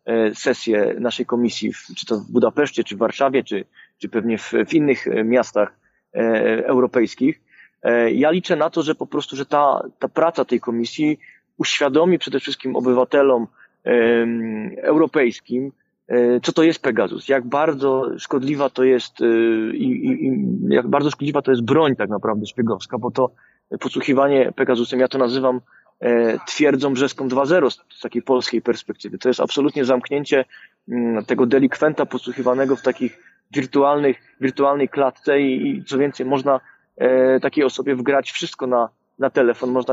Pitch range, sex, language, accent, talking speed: 125-145 Hz, male, Polish, native, 140 wpm